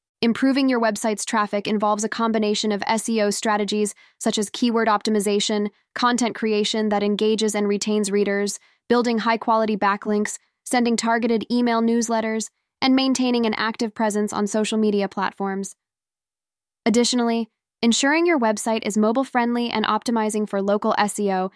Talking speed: 135 wpm